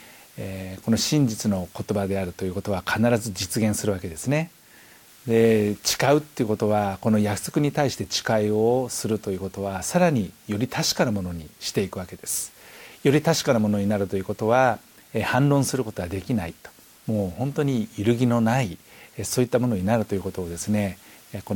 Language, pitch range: Japanese, 100-125 Hz